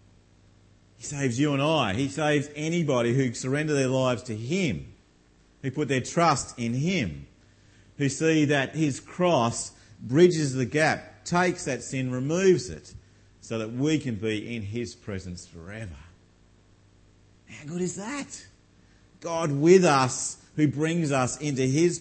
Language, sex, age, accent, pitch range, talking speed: English, male, 40-59, Australian, 100-150 Hz, 145 wpm